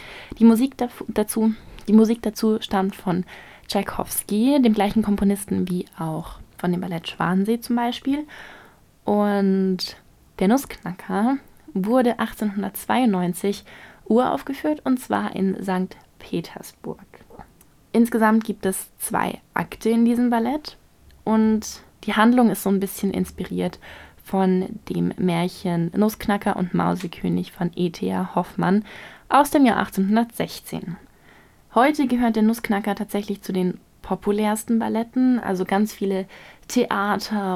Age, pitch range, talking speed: 20-39, 185-230 Hz, 115 wpm